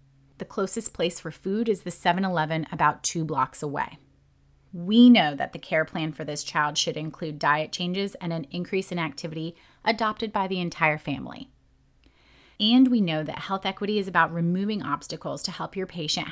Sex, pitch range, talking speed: female, 150-210 Hz, 180 wpm